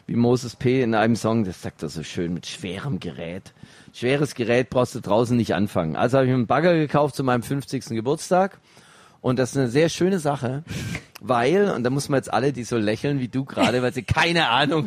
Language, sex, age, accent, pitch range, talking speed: German, male, 40-59, German, 125-155 Hz, 225 wpm